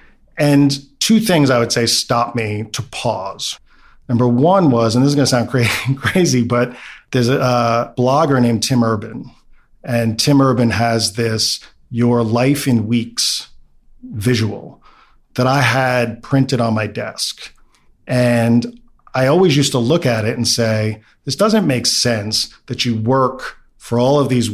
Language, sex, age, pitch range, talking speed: English, male, 40-59, 115-130 Hz, 160 wpm